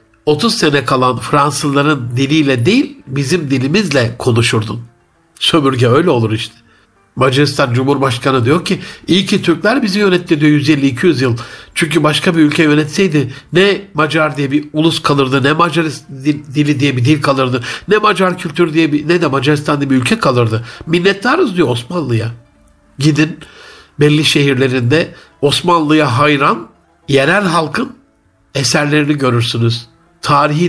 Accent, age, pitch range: native, 60-79, 130-175 Hz